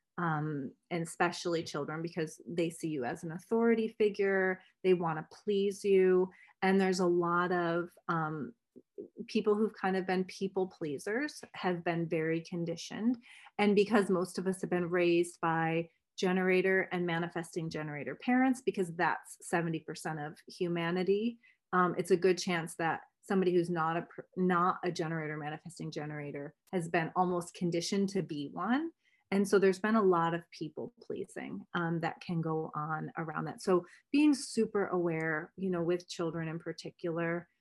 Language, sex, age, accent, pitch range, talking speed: English, female, 30-49, American, 165-190 Hz, 160 wpm